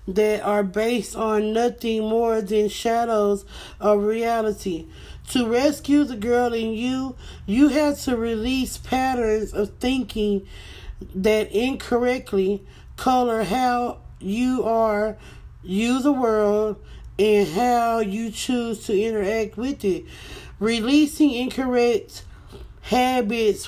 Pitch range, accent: 205-250 Hz, American